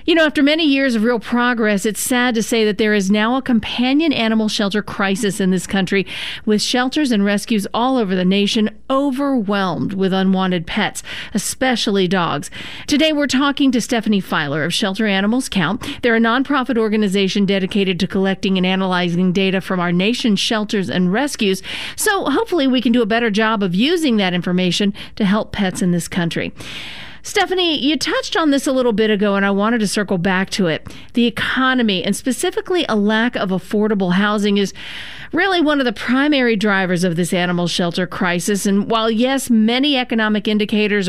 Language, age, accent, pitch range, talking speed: English, 40-59, American, 190-240 Hz, 185 wpm